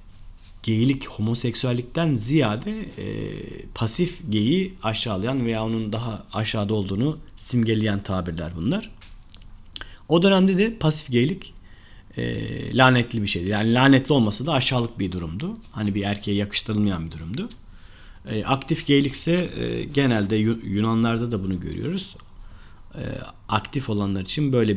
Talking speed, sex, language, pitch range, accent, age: 125 wpm, male, Turkish, 100-135 Hz, native, 40-59